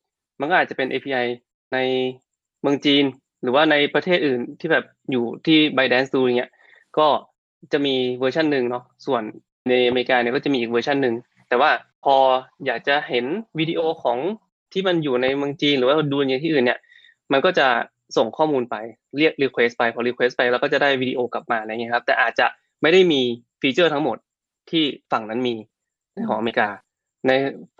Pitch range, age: 120-150 Hz, 20-39